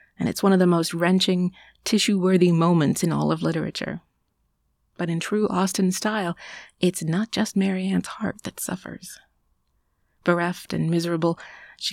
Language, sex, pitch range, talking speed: English, female, 155-185 Hz, 145 wpm